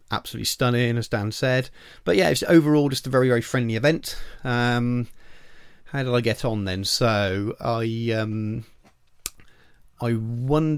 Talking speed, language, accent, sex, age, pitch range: 150 wpm, English, British, male, 30-49, 95-120 Hz